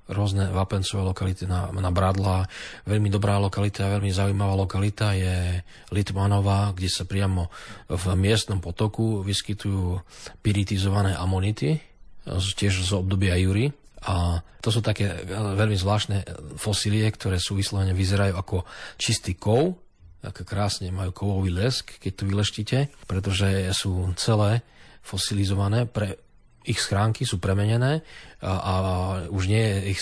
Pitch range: 95-105 Hz